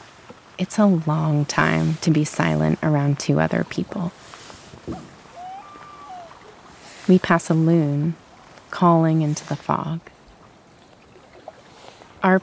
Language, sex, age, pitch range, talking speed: English, female, 30-49, 145-180 Hz, 95 wpm